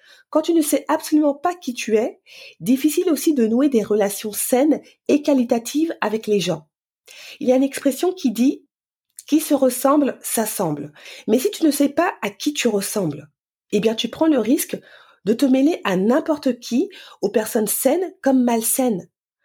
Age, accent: 30-49, French